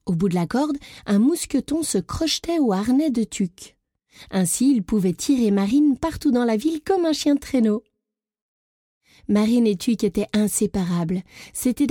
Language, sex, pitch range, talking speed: French, female, 195-260 Hz, 165 wpm